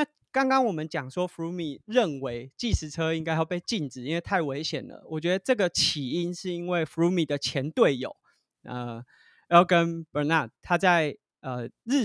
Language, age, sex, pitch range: Chinese, 20-39, male, 135-175 Hz